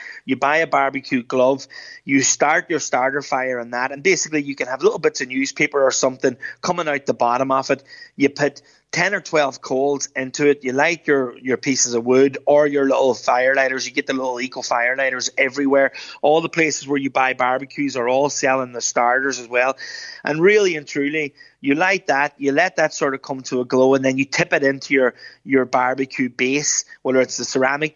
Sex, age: male, 20-39